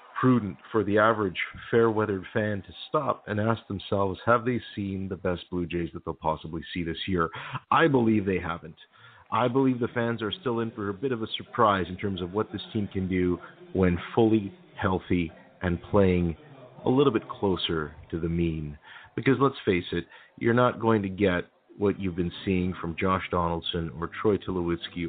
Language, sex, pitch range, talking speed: English, male, 90-115 Hz, 190 wpm